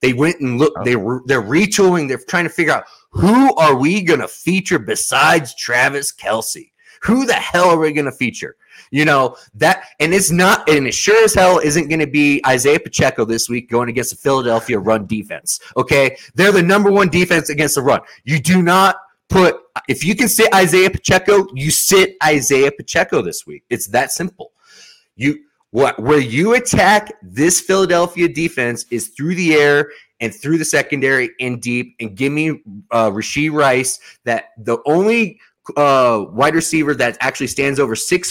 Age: 30-49